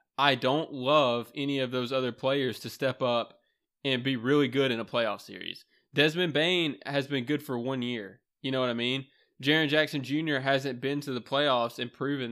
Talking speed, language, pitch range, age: 205 wpm, English, 125-150 Hz, 20-39